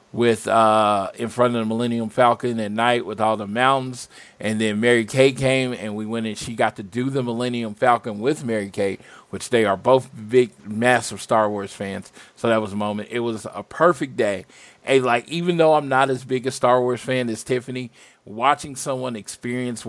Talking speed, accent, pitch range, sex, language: 210 wpm, American, 110-130 Hz, male, English